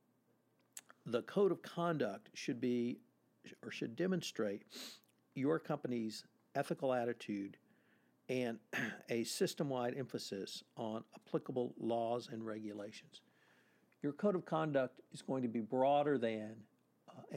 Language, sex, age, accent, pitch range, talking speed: English, male, 60-79, American, 110-145 Hz, 115 wpm